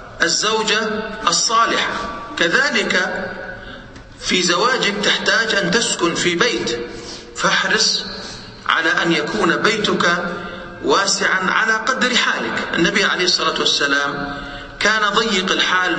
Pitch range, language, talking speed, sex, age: 165-215 Hz, English, 100 wpm, male, 40-59